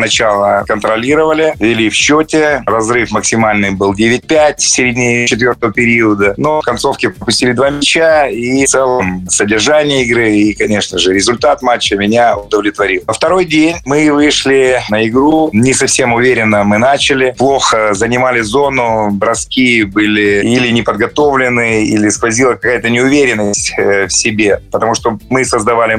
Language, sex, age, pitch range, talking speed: Russian, male, 30-49, 110-135 Hz, 140 wpm